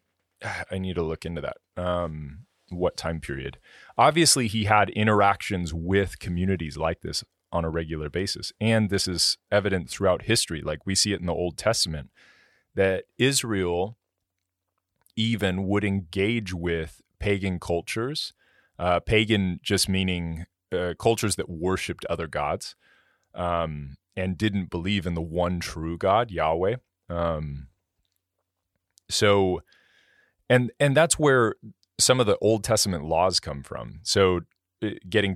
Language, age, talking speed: English, 30-49, 135 wpm